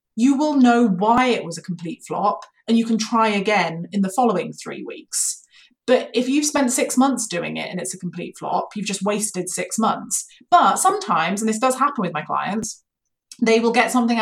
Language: English